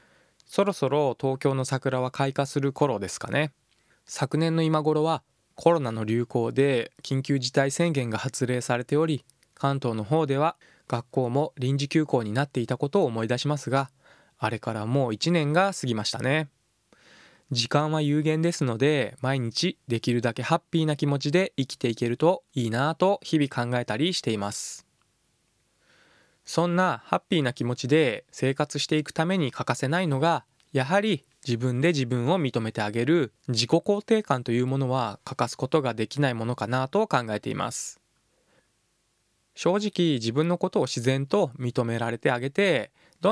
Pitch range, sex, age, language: 125-160 Hz, male, 20-39, Japanese